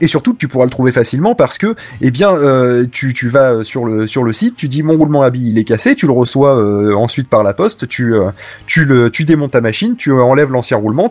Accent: French